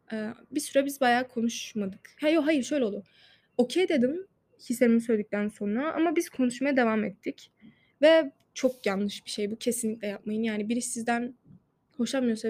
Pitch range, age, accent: 220-255 Hz, 20-39, native